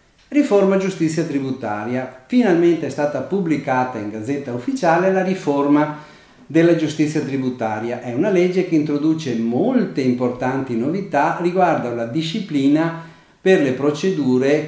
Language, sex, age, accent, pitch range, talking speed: Italian, male, 40-59, native, 125-170 Hz, 120 wpm